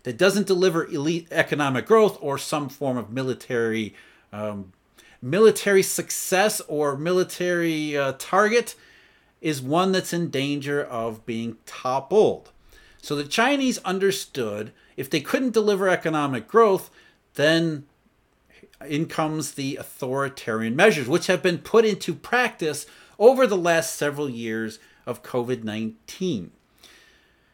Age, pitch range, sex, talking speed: 40-59, 130-190 Hz, male, 120 wpm